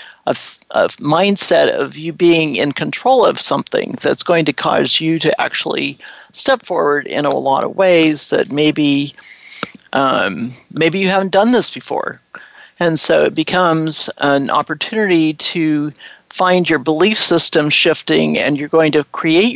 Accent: American